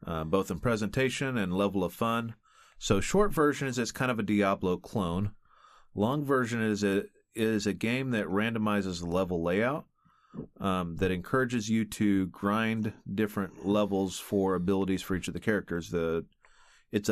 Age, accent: 30-49, American